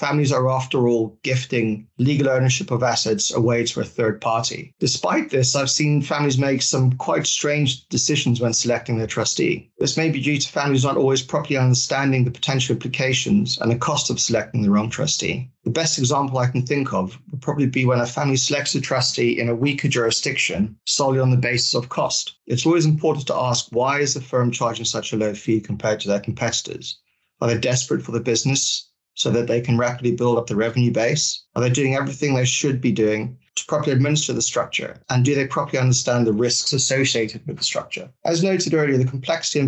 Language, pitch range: English, 120-140 Hz